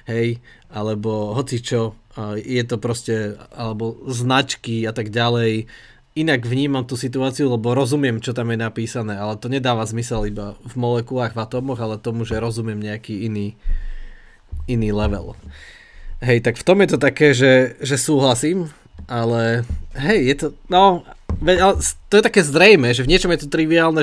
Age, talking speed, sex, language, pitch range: 20-39, 160 wpm, male, Slovak, 115-145 Hz